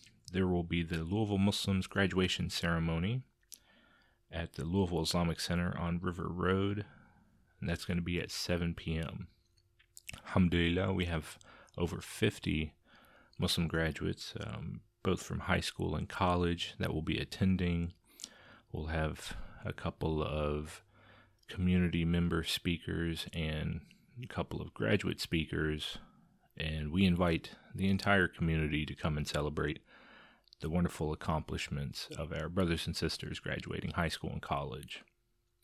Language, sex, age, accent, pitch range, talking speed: English, male, 30-49, American, 80-95 Hz, 135 wpm